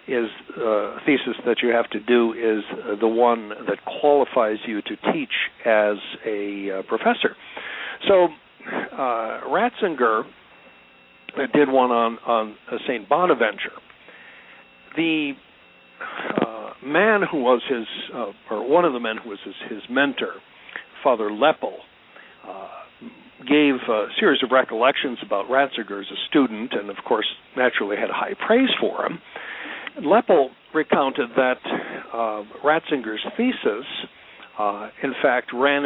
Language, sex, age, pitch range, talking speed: English, male, 60-79, 115-145 Hz, 130 wpm